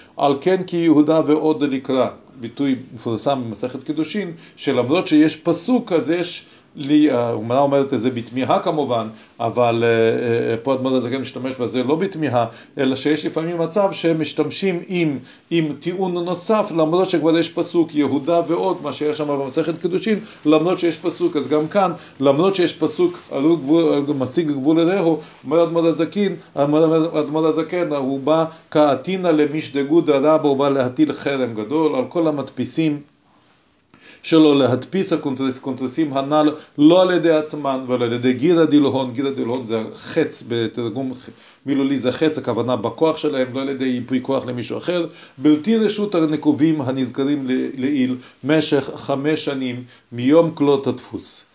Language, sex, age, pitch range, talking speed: Hebrew, male, 40-59, 130-165 Hz, 140 wpm